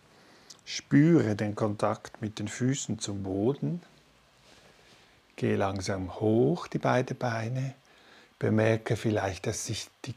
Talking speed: 110 wpm